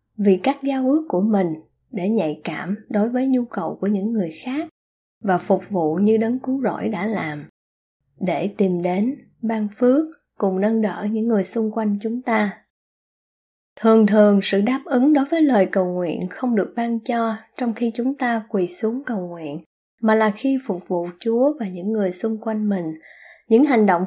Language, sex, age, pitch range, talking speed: Vietnamese, female, 20-39, 190-235 Hz, 190 wpm